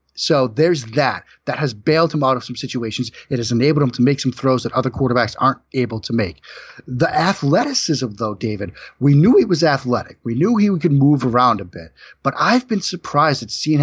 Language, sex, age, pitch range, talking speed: English, male, 30-49, 120-150 Hz, 215 wpm